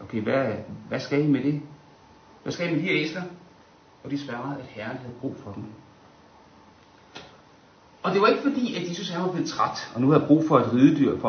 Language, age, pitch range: Danish, 60-79, 135-195 Hz